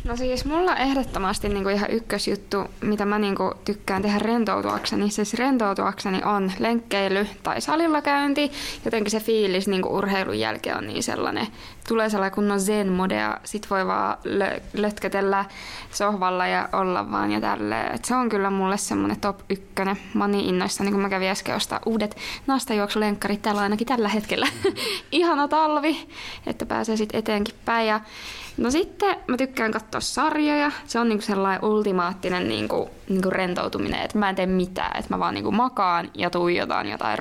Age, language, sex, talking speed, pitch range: 20-39, Finnish, female, 160 wpm, 185-225 Hz